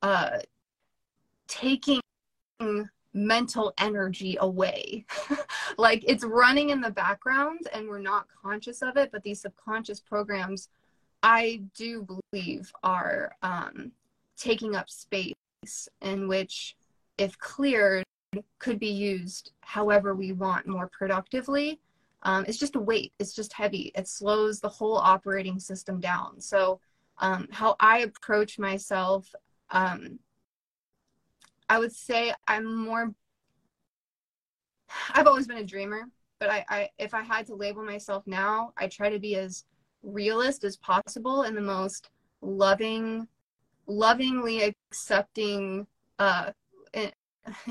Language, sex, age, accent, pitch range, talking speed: English, female, 20-39, American, 195-230 Hz, 125 wpm